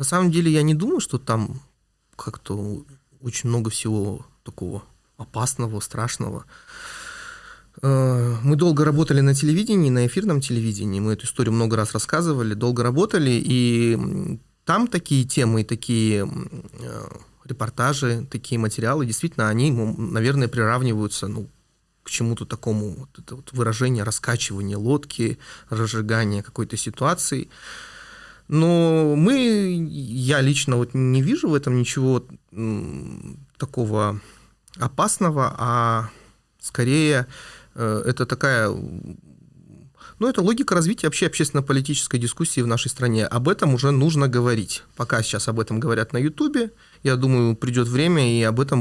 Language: Russian